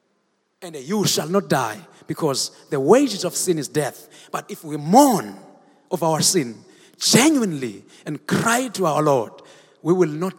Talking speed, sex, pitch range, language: 160 wpm, male, 155-205 Hz, English